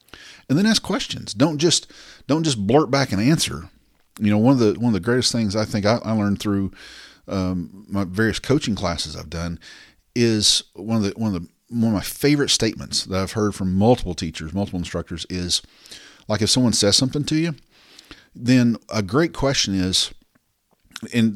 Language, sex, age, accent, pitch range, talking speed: English, male, 40-59, American, 95-120 Hz, 195 wpm